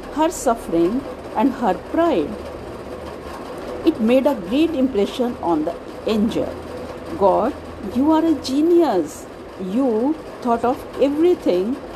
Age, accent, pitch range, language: 50-69, native, 210-295 Hz, Hindi